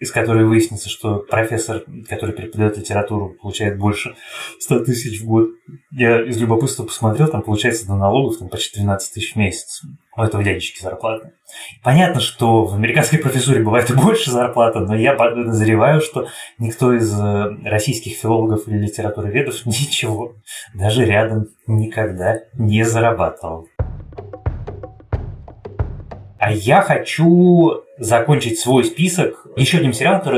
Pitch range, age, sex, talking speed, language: 105-125 Hz, 20-39, male, 130 wpm, Russian